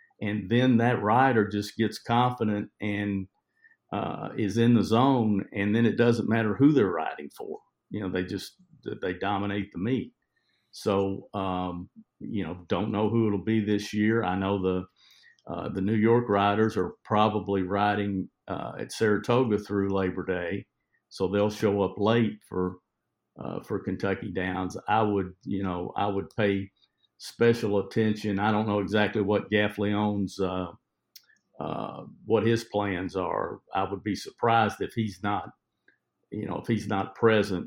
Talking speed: 165 wpm